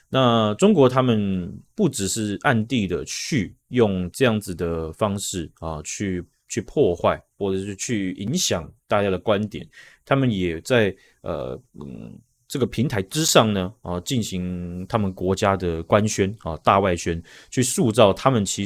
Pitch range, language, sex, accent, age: 90-125 Hz, Chinese, male, native, 30-49